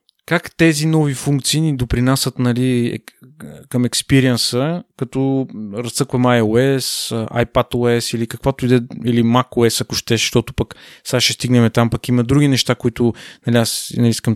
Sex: male